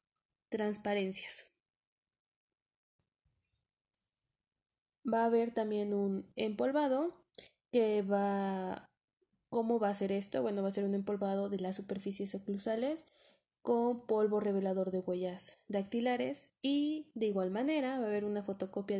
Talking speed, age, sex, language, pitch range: 125 wpm, 20-39, female, Spanish, 200-245 Hz